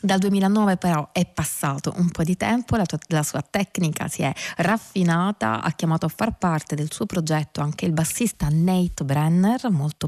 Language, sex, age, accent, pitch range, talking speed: Italian, female, 20-39, native, 160-200 Hz, 180 wpm